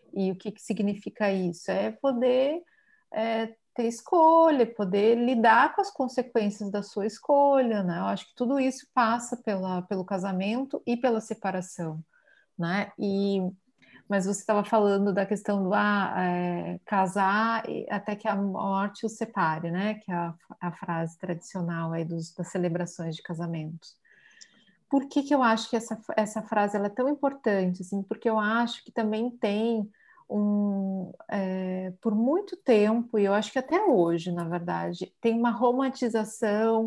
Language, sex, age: Portuguese, female, 40-59